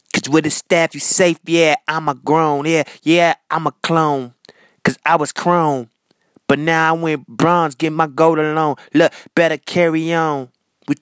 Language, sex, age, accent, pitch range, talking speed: English, male, 20-39, American, 155-175 Hz, 175 wpm